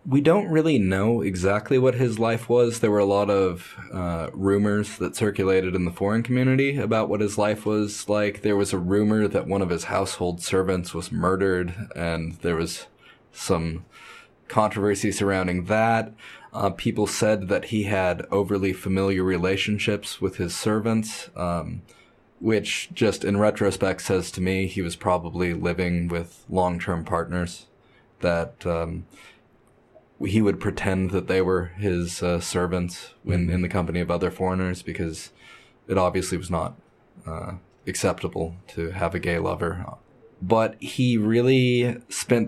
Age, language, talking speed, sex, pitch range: 20-39, English, 155 wpm, male, 90-105 Hz